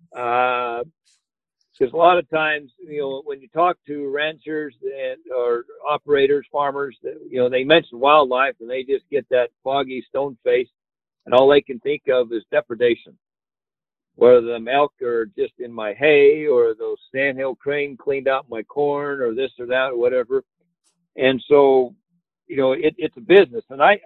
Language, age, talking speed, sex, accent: English, 50-69, 175 wpm, male, American